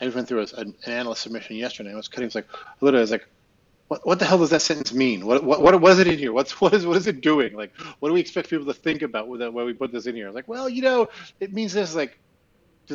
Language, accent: English, American